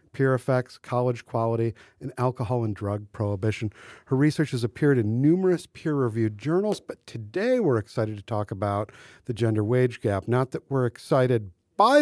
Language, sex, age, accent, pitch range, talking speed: English, male, 50-69, American, 120-170 Hz, 165 wpm